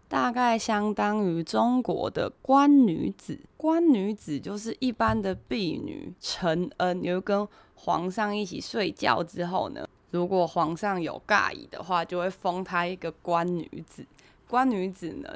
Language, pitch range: Chinese, 175-225 Hz